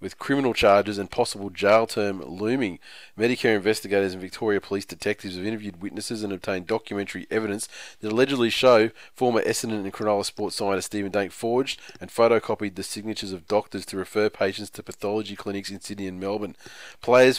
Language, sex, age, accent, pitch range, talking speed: English, male, 20-39, Australian, 100-110 Hz, 175 wpm